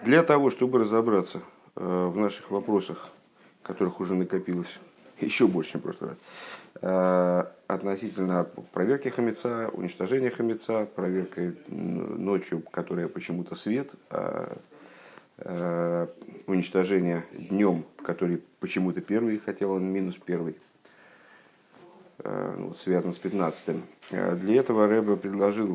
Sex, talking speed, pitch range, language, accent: male, 100 wpm, 90-115 Hz, Russian, native